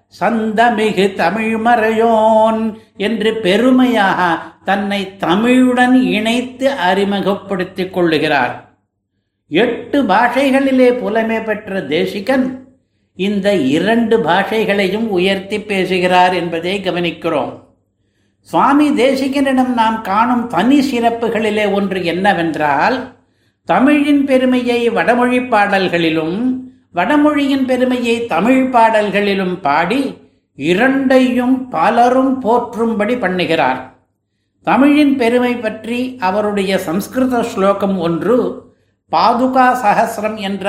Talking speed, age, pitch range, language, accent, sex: 75 wpm, 60-79, 185-240 Hz, Tamil, native, male